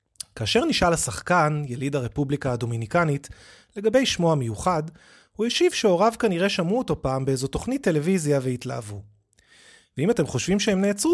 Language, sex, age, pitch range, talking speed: Hebrew, male, 30-49, 130-195 Hz, 135 wpm